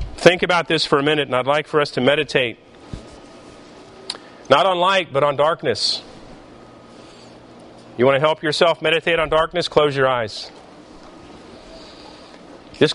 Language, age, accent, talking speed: English, 40-59, American, 145 wpm